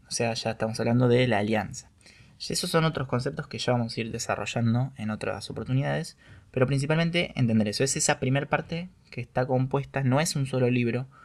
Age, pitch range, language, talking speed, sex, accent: 20-39, 110-135 Hz, Spanish, 205 wpm, male, Argentinian